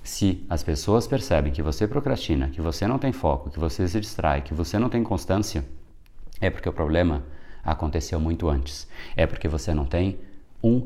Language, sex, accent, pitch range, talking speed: Portuguese, male, Brazilian, 80-110 Hz, 190 wpm